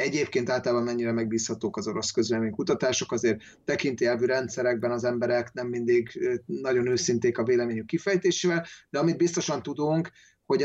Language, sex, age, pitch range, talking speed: Hungarian, male, 30-49, 120-150 Hz, 140 wpm